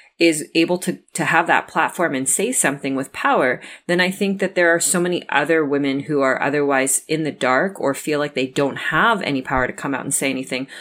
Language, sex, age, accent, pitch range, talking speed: English, female, 30-49, American, 140-170 Hz, 235 wpm